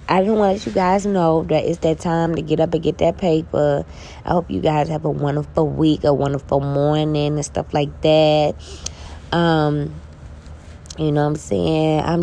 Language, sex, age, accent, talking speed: English, female, 20-39, American, 190 wpm